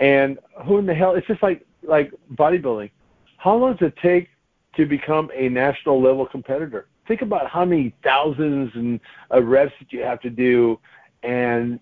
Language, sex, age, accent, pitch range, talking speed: English, male, 50-69, American, 125-165 Hz, 170 wpm